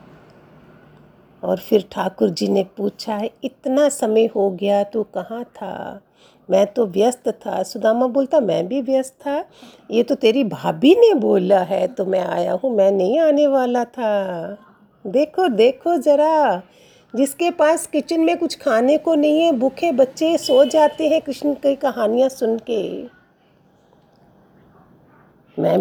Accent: native